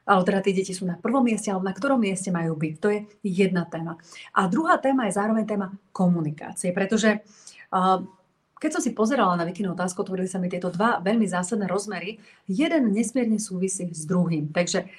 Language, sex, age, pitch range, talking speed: Slovak, female, 30-49, 175-225 Hz, 190 wpm